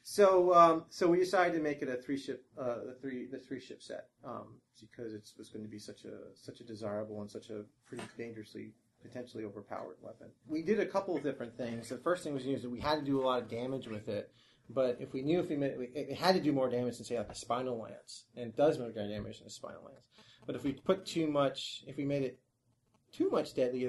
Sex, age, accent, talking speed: male, 30-49, American, 260 wpm